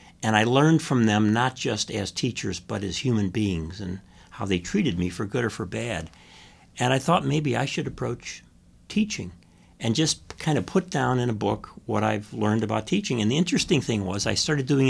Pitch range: 95-135 Hz